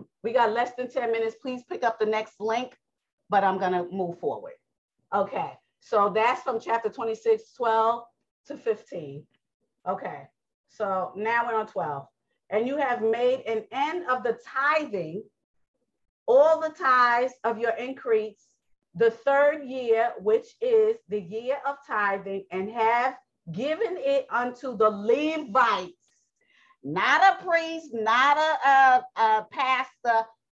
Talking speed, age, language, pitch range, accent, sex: 140 wpm, 40-59, English, 190-260 Hz, American, female